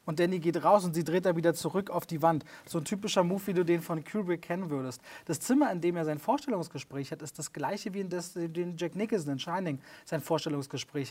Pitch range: 165-190 Hz